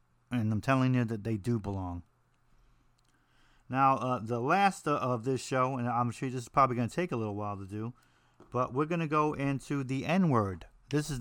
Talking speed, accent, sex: 215 wpm, American, male